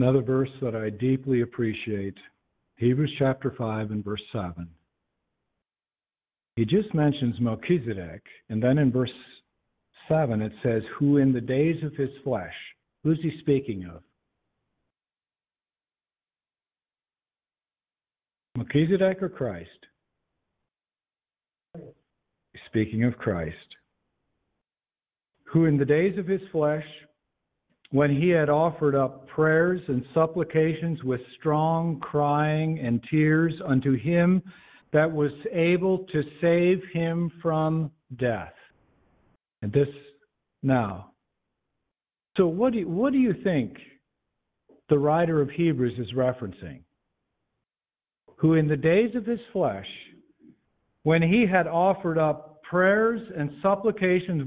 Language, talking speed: English, 110 wpm